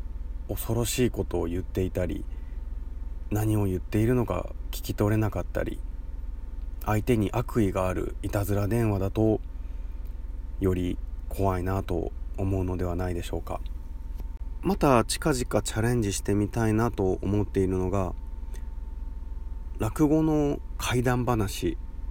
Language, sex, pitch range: Japanese, male, 70-105 Hz